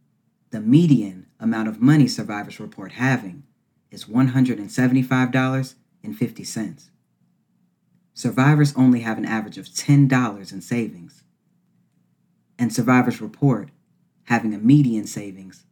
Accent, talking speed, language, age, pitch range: American, 100 wpm, English, 40-59, 110-140 Hz